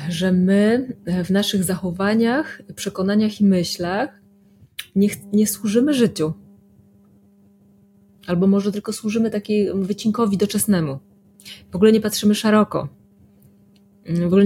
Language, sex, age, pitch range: Polish, female, 20-39, 175-210 Hz